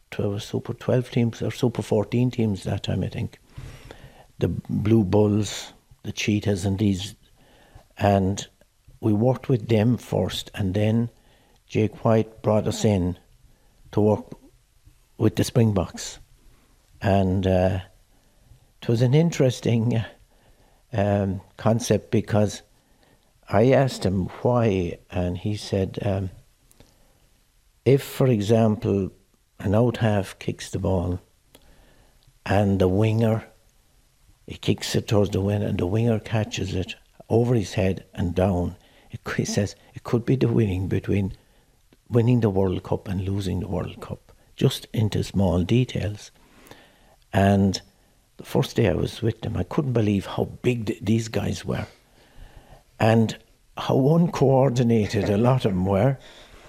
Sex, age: male, 60-79